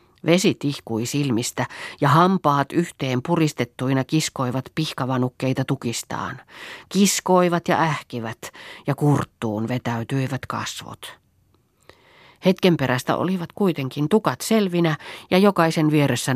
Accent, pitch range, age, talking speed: native, 120-150 Hz, 40-59, 95 wpm